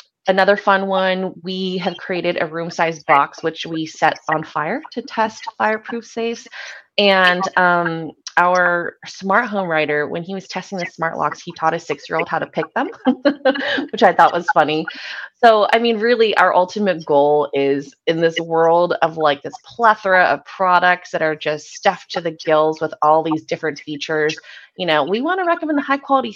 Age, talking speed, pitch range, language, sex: 20-39, 185 wpm, 155-190 Hz, English, female